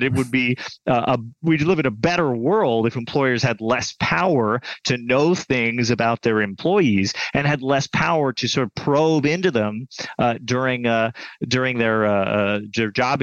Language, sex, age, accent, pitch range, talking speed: English, male, 30-49, American, 115-155 Hz, 180 wpm